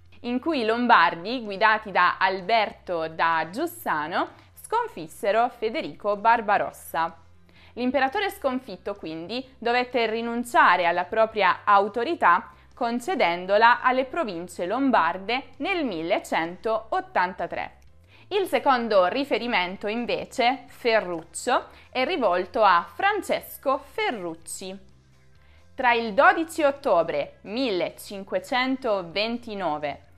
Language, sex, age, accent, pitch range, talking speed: Italian, female, 20-39, native, 175-260 Hz, 80 wpm